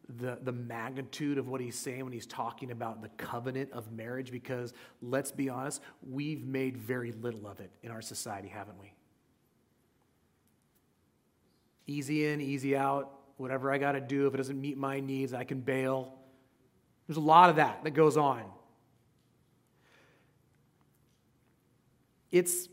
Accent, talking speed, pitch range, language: American, 150 wpm, 130-190 Hz, English